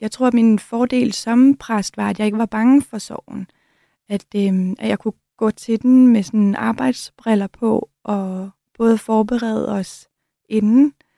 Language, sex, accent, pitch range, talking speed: Danish, female, native, 205-235 Hz, 170 wpm